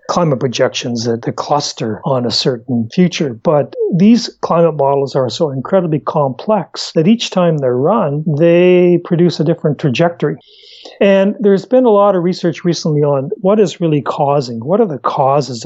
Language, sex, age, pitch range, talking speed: English, male, 40-59, 125-170 Hz, 170 wpm